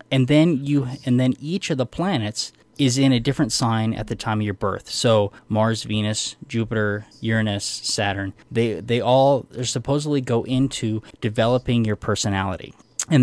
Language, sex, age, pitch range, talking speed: English, male, 20-39, 110-135 Hz, 165 wpm